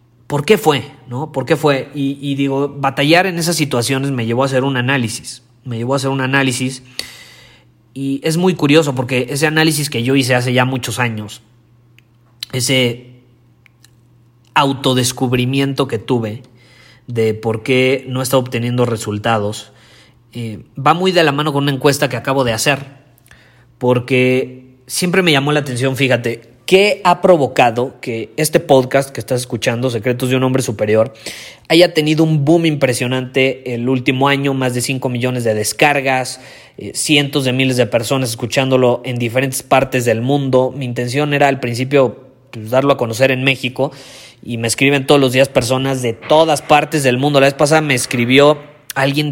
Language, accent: Spanish, Mexican